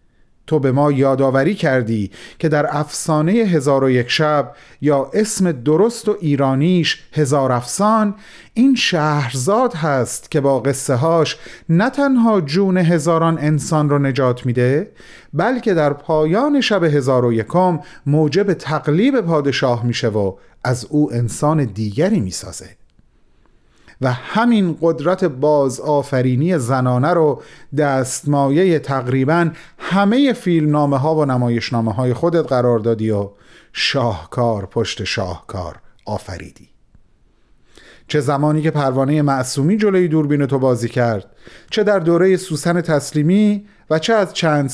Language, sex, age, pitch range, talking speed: Persian, male, 30-49, 130-170 Hz, 125 wpm